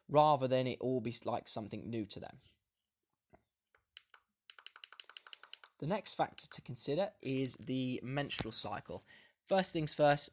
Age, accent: 20-39, British